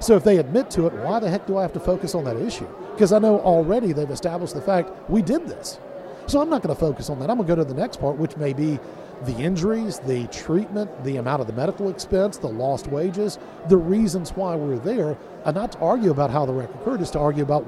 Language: English